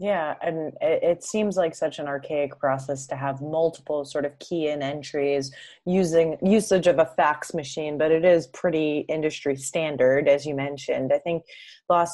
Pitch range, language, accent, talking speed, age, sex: 140-165 Hz, English, American, 175 wpm, 20-39, female